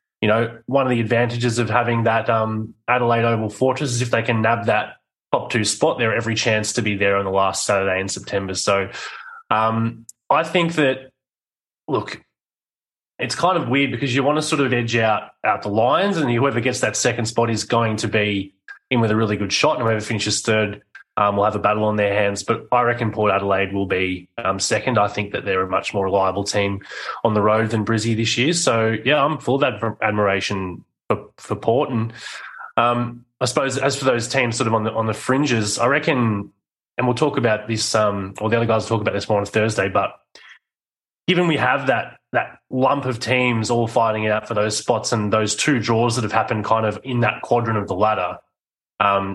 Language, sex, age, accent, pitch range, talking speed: English, male, 20-39, Australian, 105-120 Hz, 225 wpm